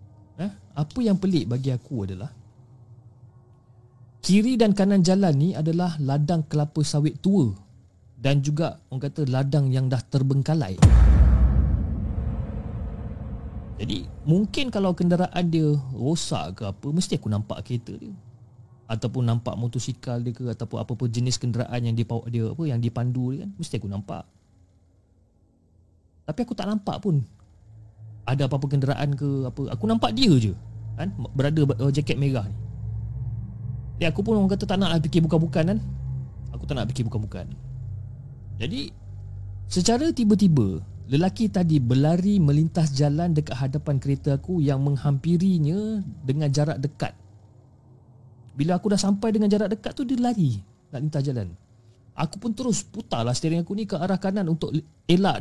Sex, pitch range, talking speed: male, 110-165 Hz, 140 wpm